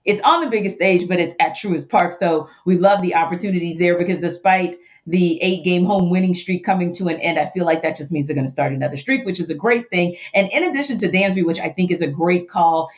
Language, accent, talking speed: English, American, 260 wpm